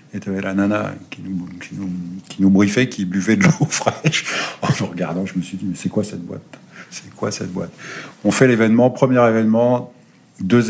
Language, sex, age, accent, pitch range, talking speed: French, male, 50-69, French, 95-120 Hz, 220 wpm